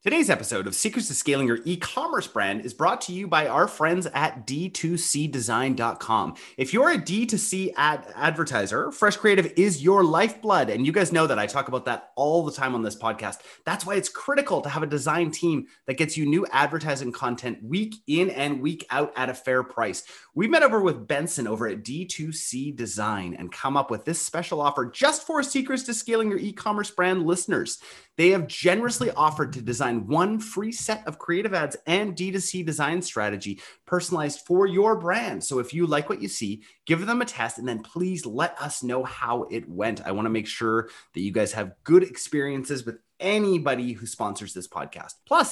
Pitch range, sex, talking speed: 130-190 Hz, male, 200 wpm